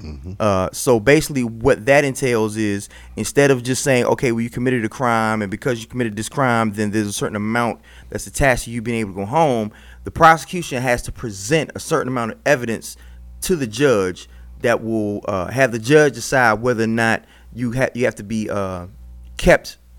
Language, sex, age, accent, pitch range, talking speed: English, male, 30-49, American, 100-130 Hz, 200 wpm